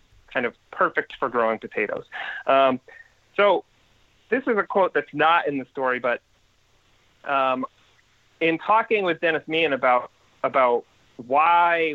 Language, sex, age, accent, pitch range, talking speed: English, male, 30-49, American, 120-165 Hz, 135 wpm